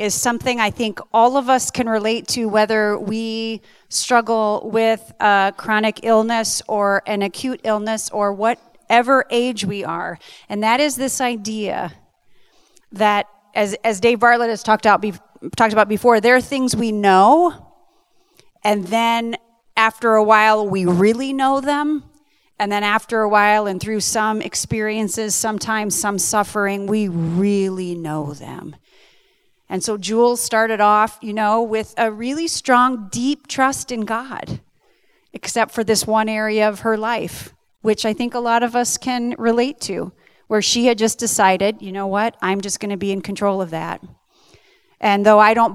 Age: 30-49